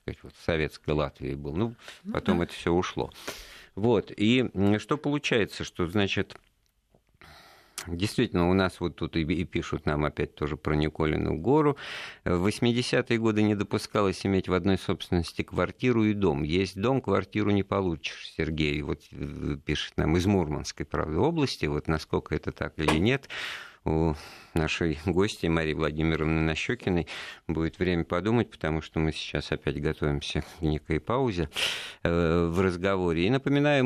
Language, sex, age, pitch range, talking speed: Russian, male, 50-69, 80-100 Hz, 145 wpm